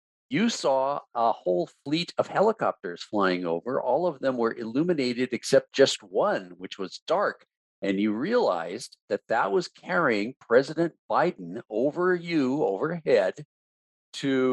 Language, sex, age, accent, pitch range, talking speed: English, male, 50-69, American, 100-135 Hz, 135 wpm